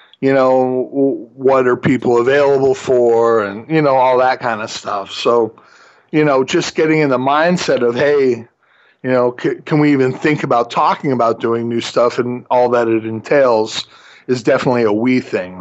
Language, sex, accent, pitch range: English, male, American, 125-165 Hz